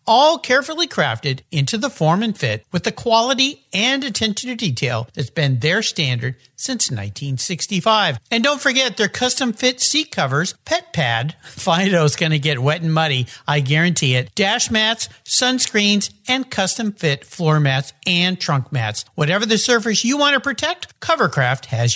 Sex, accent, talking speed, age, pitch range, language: male, American, 165 wpm, 50-69, 140-225 Hz, English